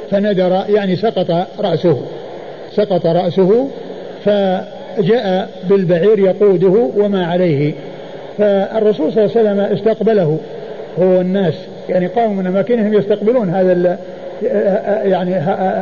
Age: 50-69